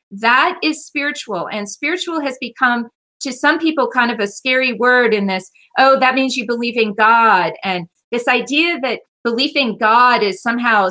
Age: 40-59